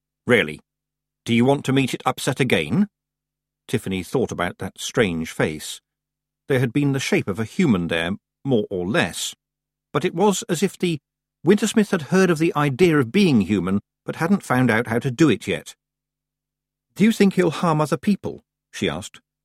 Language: English